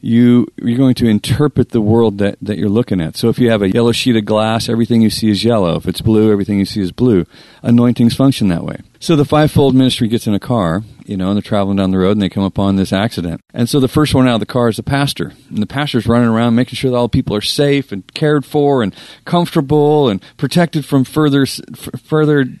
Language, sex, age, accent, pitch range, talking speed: English, male, 40-59, American, 110-140 Hz, 250 wpm